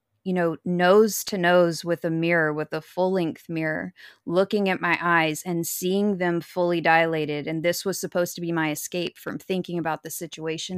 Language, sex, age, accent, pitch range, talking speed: English, female, 20-39, American, 165-190 Hz, 195 wpm